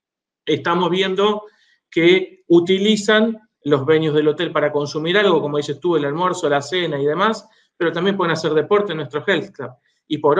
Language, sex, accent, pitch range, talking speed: Spanish, male, Argentinian, 150-190 Hz, 180 wpm